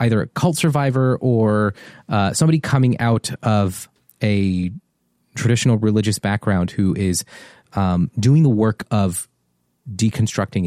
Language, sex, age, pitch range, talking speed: English, male, 30-49, 95-120 Hz, 125 wpm